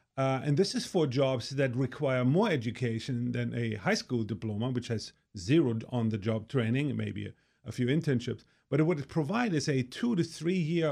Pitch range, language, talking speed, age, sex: 120-150 Hz, English, 185 wpm, 40-59, male